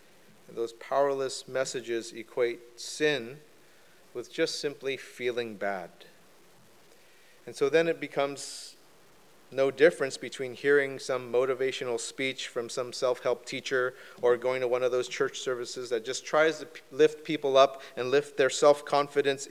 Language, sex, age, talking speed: English, male, 30-49, 140 wpm